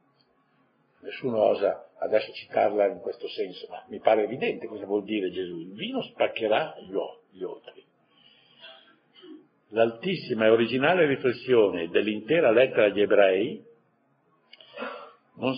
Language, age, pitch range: Italian, 60-79, 110-140 Hz